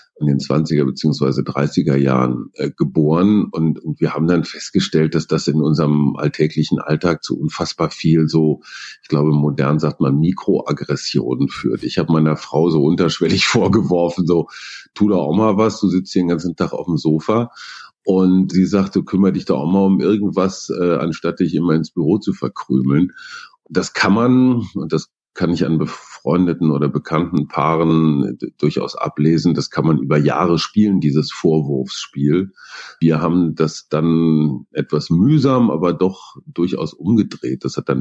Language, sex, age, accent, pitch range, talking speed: German, male, 40-59, German, 75-95 Hz, 170 wpm